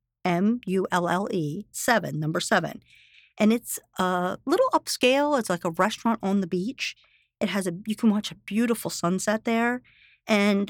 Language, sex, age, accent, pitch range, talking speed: English, female, 50-69, American, 170-225 Hz, 150 wpm